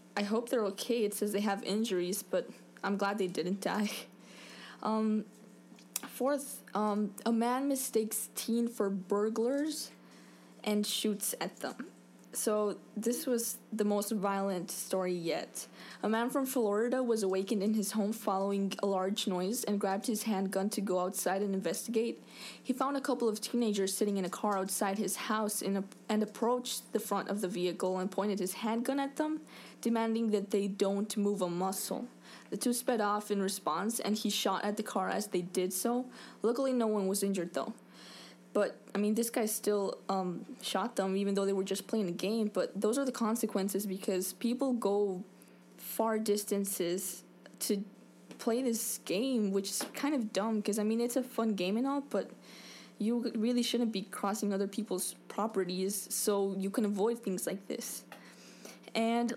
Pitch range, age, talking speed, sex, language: 195-225 Hz, 10-29, 175 wpm, female, English